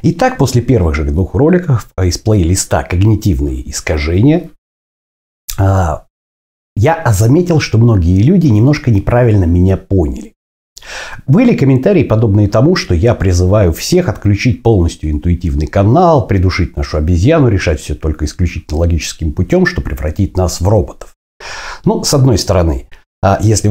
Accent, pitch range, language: native, 90-125 Hz, Russian